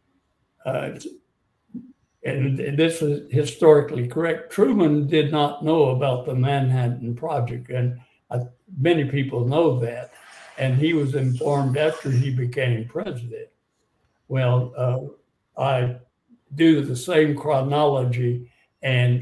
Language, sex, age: English, male, 60-79